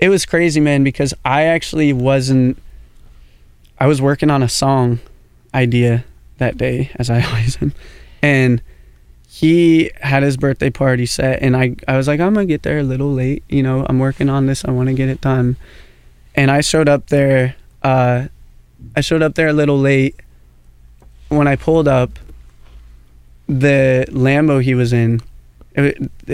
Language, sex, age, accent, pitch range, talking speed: English, male, 20-39, American, 115-140 Hz, 170 wpm